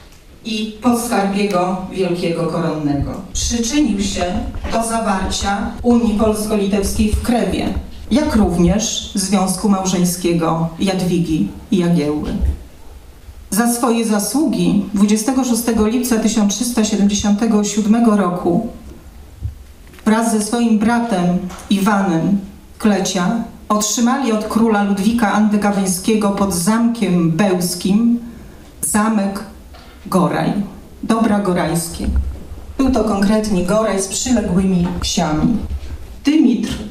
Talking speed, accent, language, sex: 85 wpm, native, Polish, female